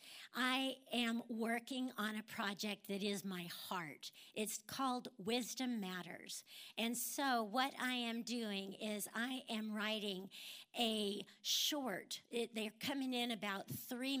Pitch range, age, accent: 210-245 Hz, 50-69, American